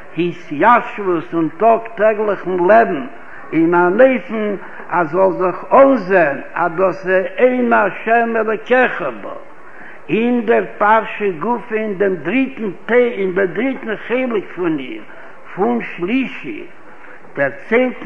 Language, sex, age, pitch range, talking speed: Hebrew, male, 60-79, 175-230 Hz, 100 wpm